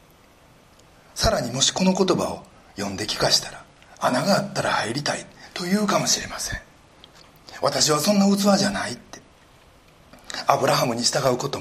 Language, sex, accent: Japanese, male, native